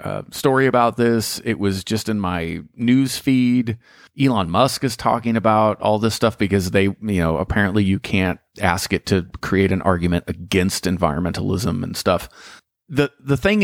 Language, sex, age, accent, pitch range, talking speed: English, male, 40-59, American, 100-130 Hz, 170 wpm